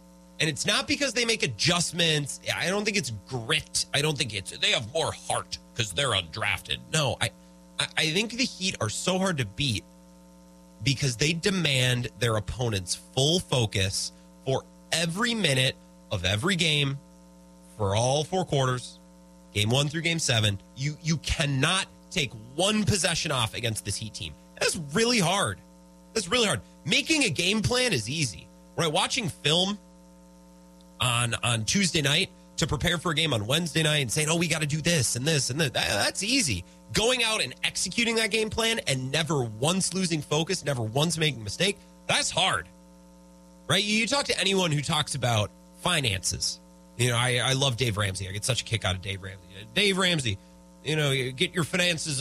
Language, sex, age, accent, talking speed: English, male, 30-49, American, 185 wpm